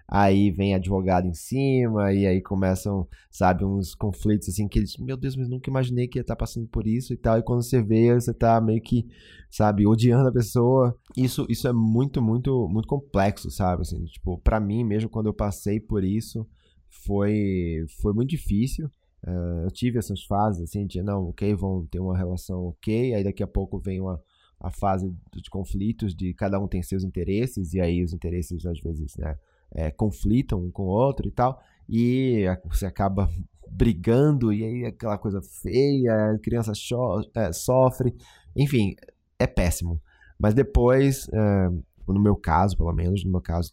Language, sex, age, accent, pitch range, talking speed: Portuguese, male, 20-39, Brazilian, 90-115 Hz, 185 wpm